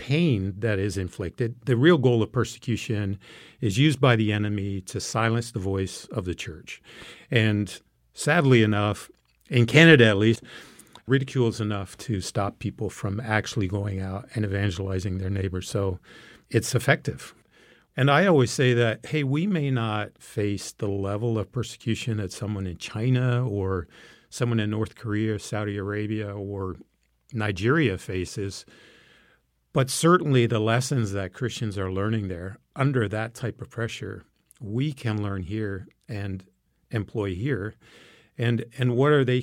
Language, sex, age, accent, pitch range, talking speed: English, male, 50-69, American, 100-125 Hz, 150 wpm